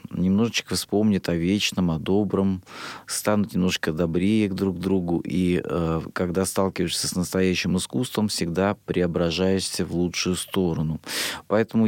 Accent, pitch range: native, 85-105 Hz